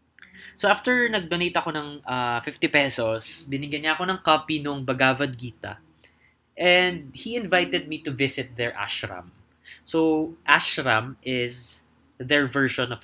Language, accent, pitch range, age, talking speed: English, Filipino, 120-160 Hz, 20-39, 140 wpm